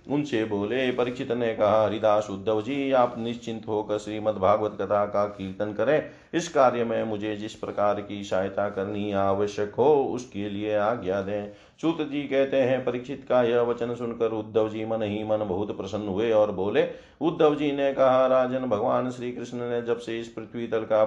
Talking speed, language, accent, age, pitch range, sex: 190 wpm, Hindi, native, 40-59, 105-125 Hz, male